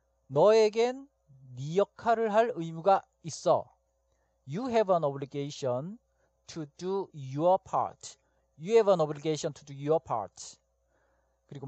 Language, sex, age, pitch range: Korean, male, 40-59, 130-195 Hz